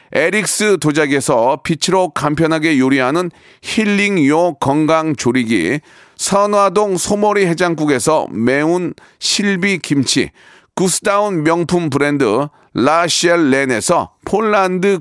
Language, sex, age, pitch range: Korean, male, 40-59, 155-200 Hz